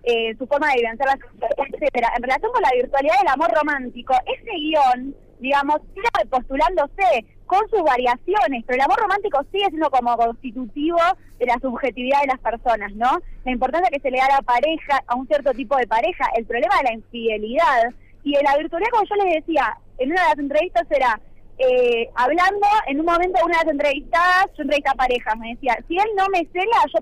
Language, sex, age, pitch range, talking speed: Spanish, female, 20-39, 240-340 Hz, 205 wpm